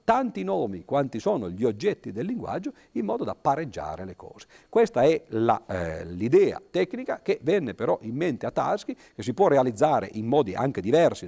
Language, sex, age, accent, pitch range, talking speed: Italian, male, 50-69, native, 110-165 Hz, 185 wpm